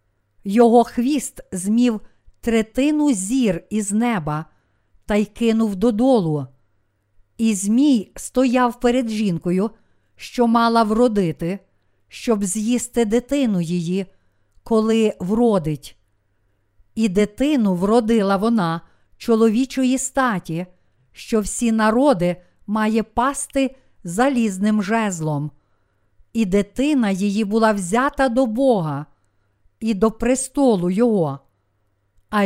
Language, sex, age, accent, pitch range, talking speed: Ukrainian, female, 50-69, native, 170-240 Hz, 90 wpm